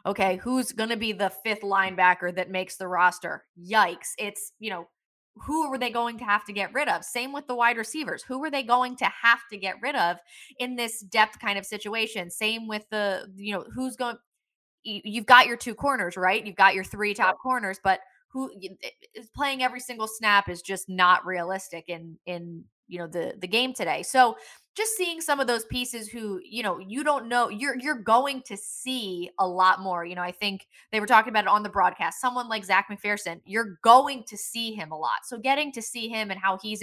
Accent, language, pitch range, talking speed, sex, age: American, English, 195-250 Hz, 225 wpm, female, 20-39